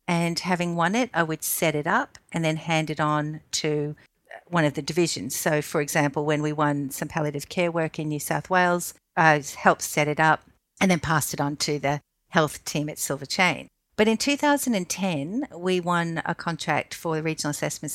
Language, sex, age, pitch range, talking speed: English, female, 60-79, 150-180 Hz, 205 wpm